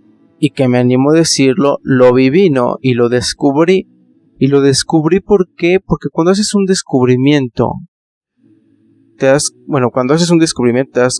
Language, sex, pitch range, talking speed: Spanish, male, 125-165 Hz, 165 wpm